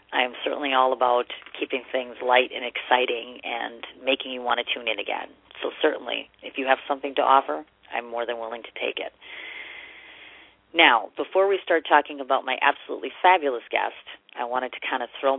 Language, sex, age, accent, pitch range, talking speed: English, female, 40-59, American, 125-155 Hz, 190 wpm